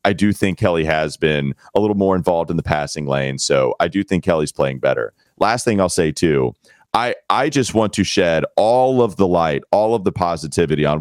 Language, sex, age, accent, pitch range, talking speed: English, male, 40-59, American, 90-130 Hz, 225 wpm